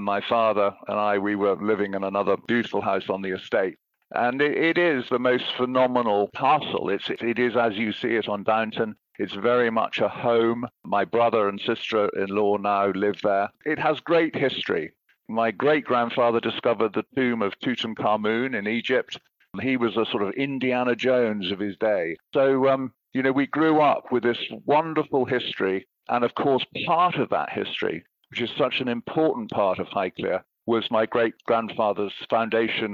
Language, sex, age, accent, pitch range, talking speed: English, male, 50-69, British, 105-130 Hz, 170 wpm